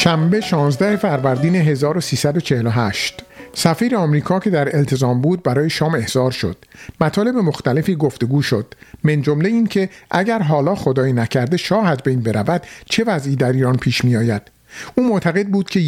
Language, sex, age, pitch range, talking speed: Persian, male, 50-69, 135-190 Hz, 155 wpm